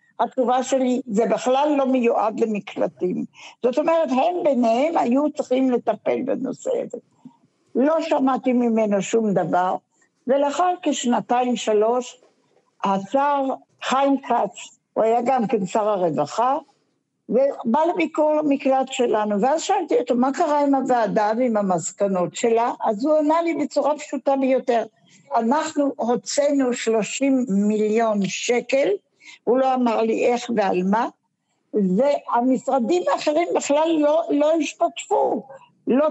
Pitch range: 230-295 Hz